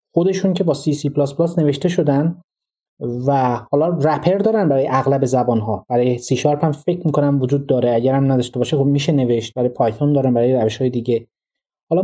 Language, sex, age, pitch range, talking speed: Persian, male, 30-49, 130-175 Hz, 200 wpm